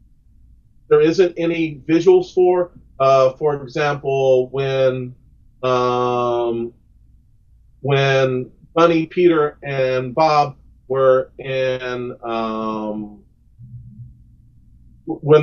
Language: English